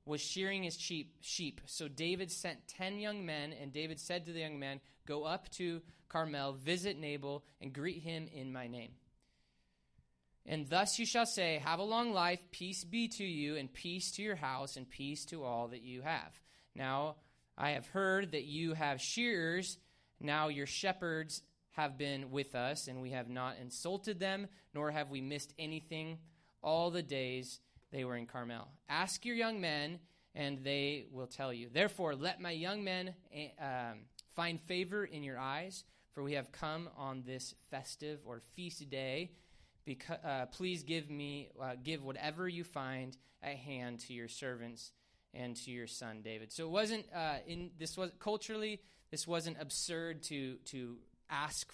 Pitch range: 130-175 Hz